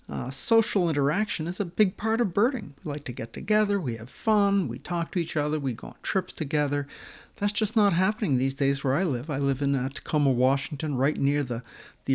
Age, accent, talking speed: 50-69, American, 225 wpm